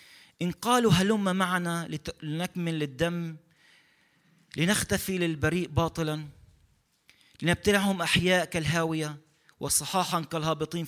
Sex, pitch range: male, 145-185 Hz